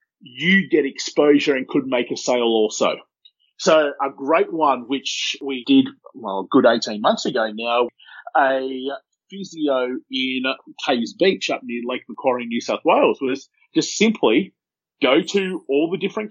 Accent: Australian